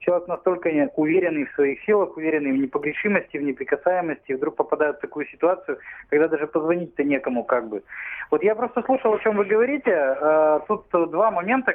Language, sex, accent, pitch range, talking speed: Russian, male, native, 150-205 Hz, 170 wpm